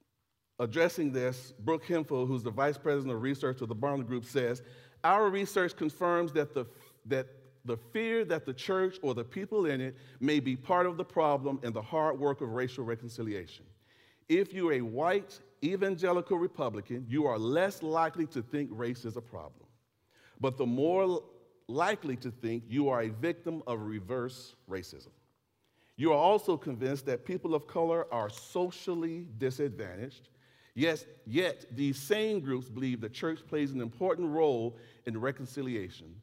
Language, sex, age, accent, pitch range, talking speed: English, male, 40-59, American, 120-165 Hz, 160 wpm